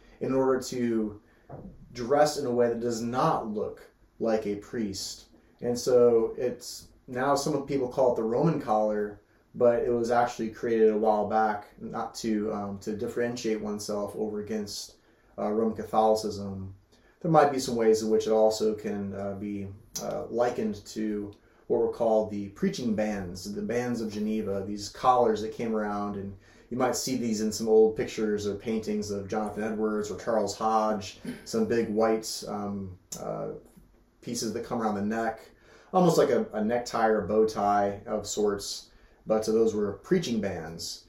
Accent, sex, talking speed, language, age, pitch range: American, male, 175 wpm, English, 30-49, 105-120 Hz